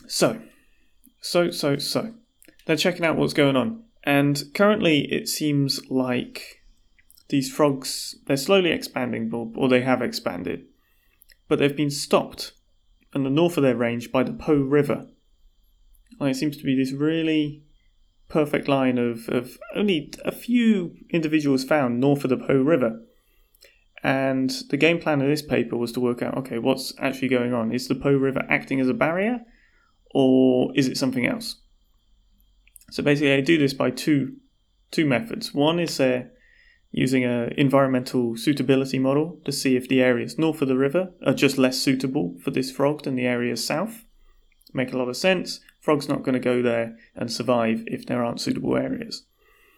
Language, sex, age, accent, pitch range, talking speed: English, male, 30-49, British, 125-155 Hz, 175 wpm